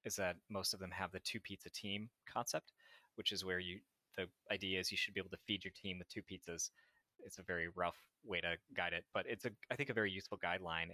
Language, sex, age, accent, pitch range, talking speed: English, male, 20-39, American, 90-105 Hz, 250 wpm